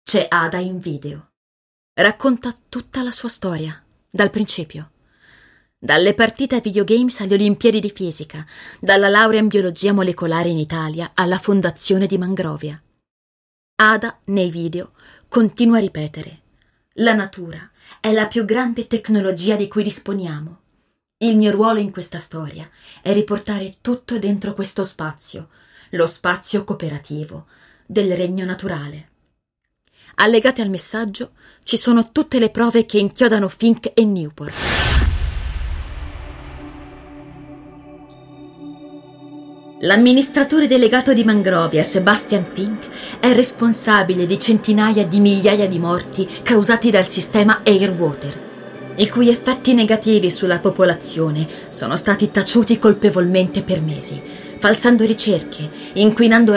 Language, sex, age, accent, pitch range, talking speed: Italian, female, 20-39, native, 165-220 Hz, 115 wpm